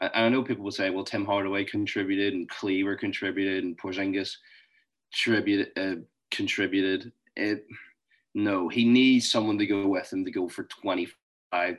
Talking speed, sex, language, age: 160 wpm, male, English, 20-39